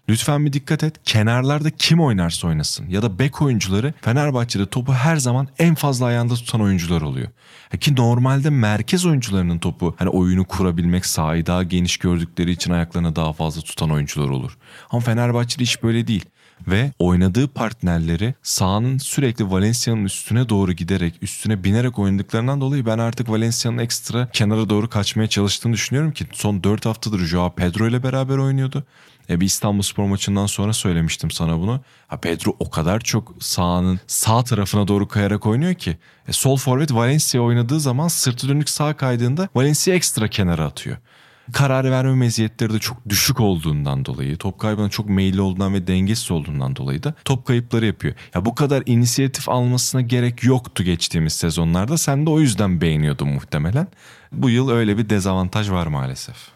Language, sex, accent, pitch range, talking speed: Turkish, male, native, 95-130 Hz, 165 wpm